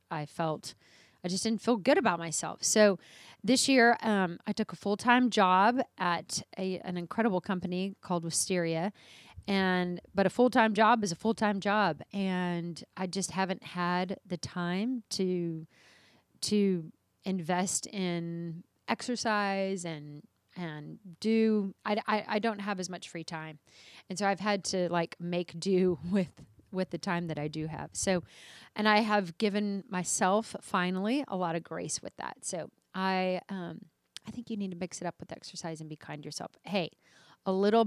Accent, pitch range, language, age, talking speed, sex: American, 170-205 Hz, English, 30-49, 170 wpm, female